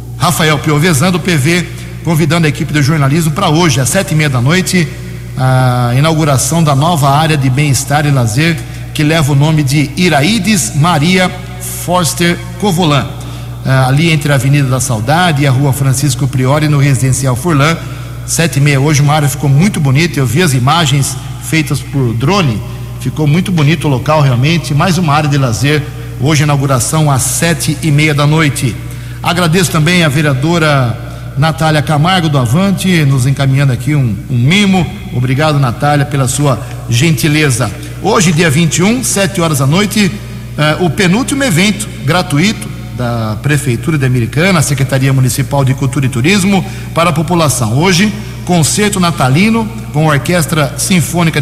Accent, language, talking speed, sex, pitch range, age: Brazilian, Portuguese, 160 wpm, male, 130-165 Hz, 60-79